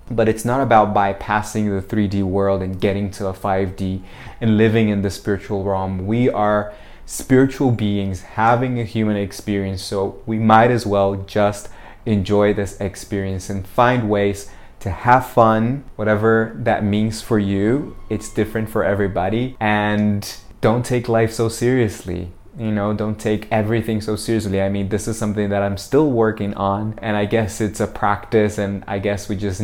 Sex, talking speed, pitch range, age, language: male, 170 wpm, 100-115 Hz, 20-39, English